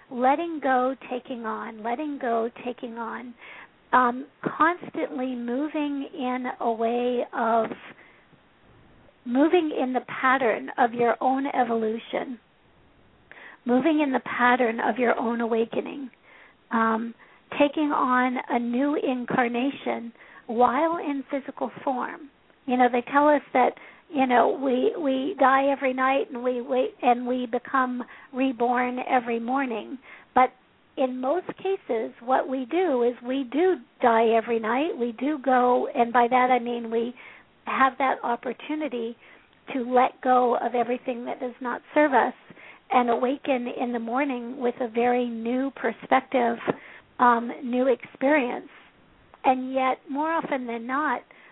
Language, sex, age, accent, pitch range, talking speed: English, female, 50-69, American, 240-270 Hz, 135 wpm